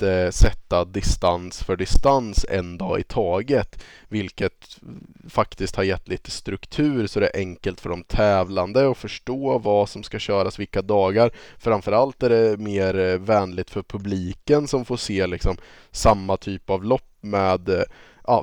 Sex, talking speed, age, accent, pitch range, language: male, 150 wpm, 20-39, Norwegian, 95-115 Hz, Swedish